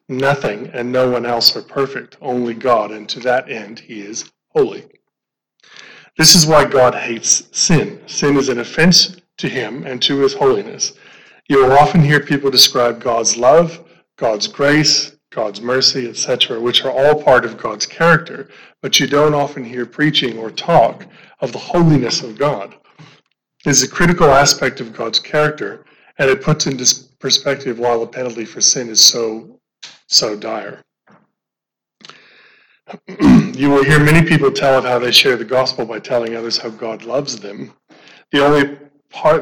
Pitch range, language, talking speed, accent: 120-150 Hz, English, 165 wpm, American